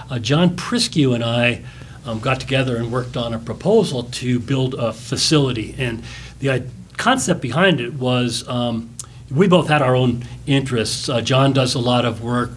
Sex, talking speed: male, 180 wpm